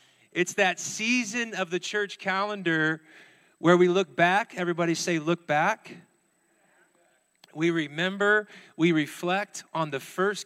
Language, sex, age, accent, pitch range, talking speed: English, male, 40-59, American, 165-195 Hz, 125 wpm